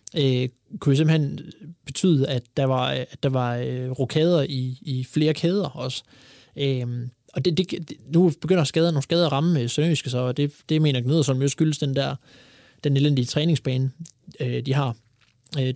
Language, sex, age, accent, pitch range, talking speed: Danish, male, 20-39, native, 130-150 Hz, 170 wpm